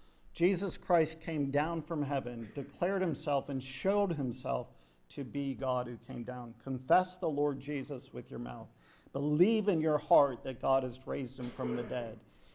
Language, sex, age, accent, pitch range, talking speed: English, male, 50-69, American, 135-175 Hz, 170 wpm